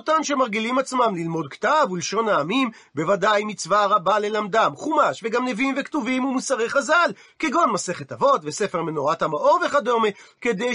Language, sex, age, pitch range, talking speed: Hebrew, male, 40-59, 205-280 Hz, 140 wpm